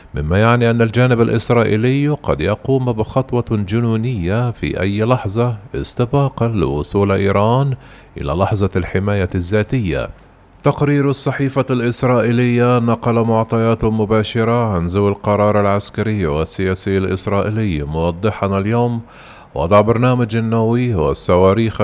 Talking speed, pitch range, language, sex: 100 wpm, 95-120 Hz, Arabic, male